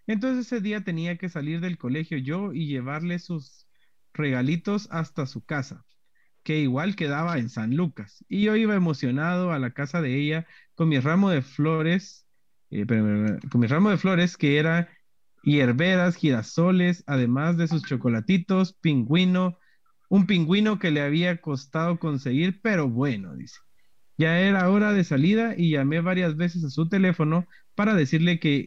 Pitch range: 145-190 Hz